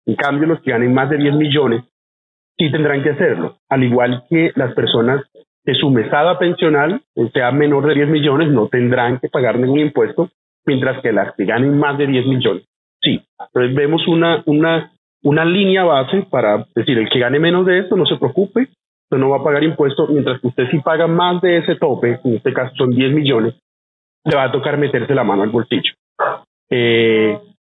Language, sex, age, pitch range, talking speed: Spanish, male, 40-59, 125-155 Hz, 200 wpm